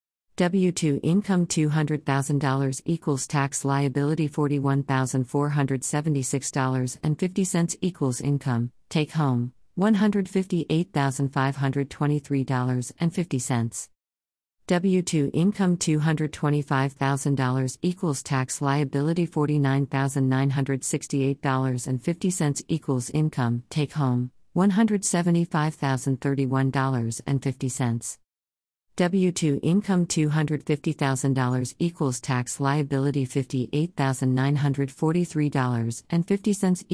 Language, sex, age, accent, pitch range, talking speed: English, female, 50-69, American, 130-160 Hz, 50 wpm